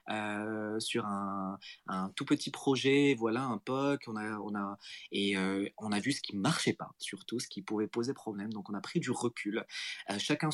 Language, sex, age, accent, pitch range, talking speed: English, male, 30-49, French, 100-140 Hz, 190 wpm